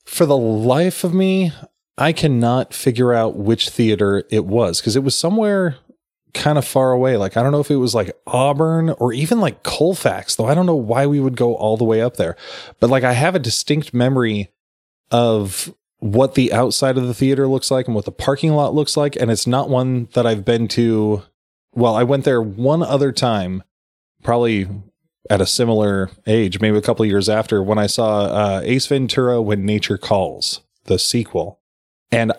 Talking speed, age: 200 wpm, 20-39